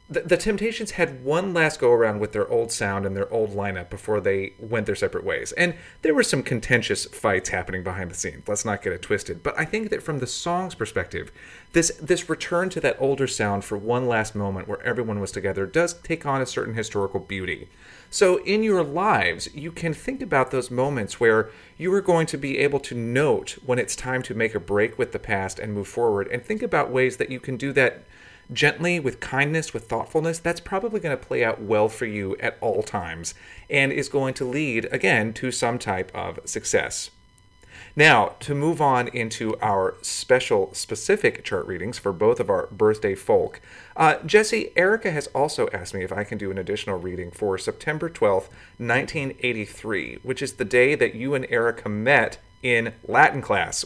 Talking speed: 200 wpm